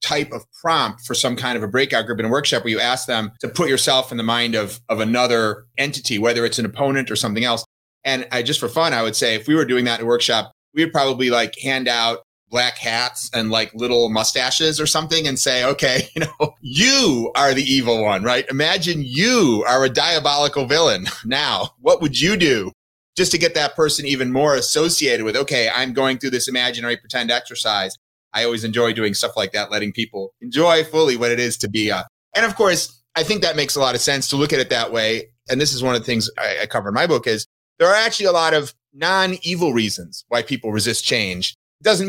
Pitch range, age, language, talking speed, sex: 120-150 Hz, 30-49, English, 230 wpm, male